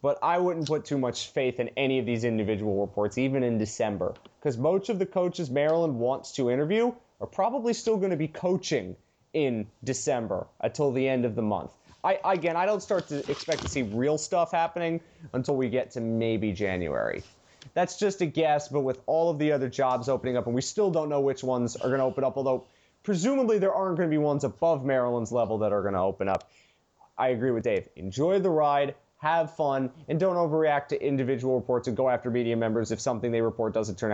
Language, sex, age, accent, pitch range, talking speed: English, male, 20-39, American, 120-165 Hz, 220 wpm